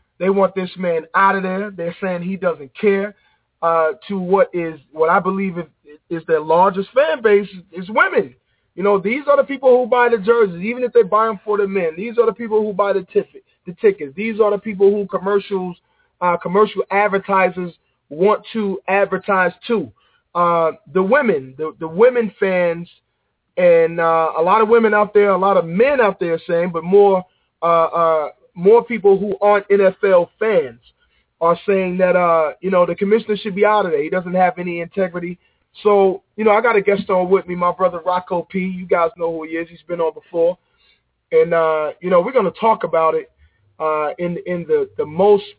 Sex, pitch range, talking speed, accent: male, 170-205 Hz, 210 wpm, American